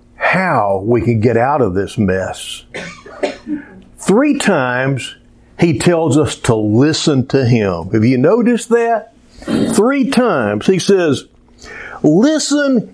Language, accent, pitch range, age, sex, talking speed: English, American, 125-200 Hz, 60-79, male, 120 wpm